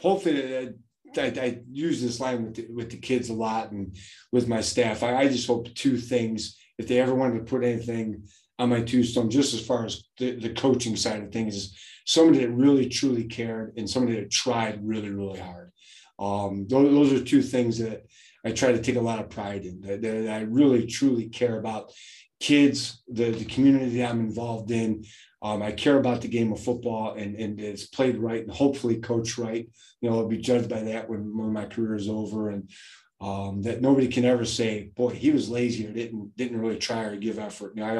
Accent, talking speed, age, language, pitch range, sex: American, 220 wpm, 30-49, English, 105-125 Hz, male